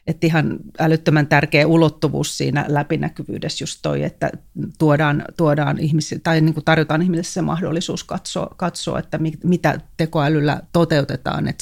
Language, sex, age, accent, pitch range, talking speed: Finnish, female, 30-49, native, 155-180 Hz, 145 wpm